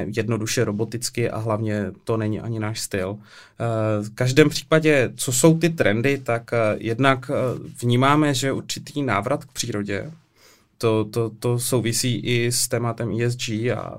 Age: 20-39